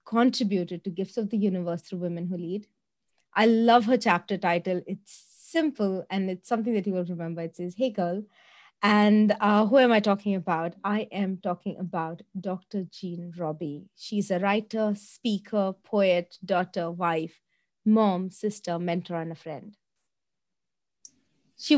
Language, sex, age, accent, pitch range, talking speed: English, female, 30-49, Indian, 180-220 Hz, 155 wpm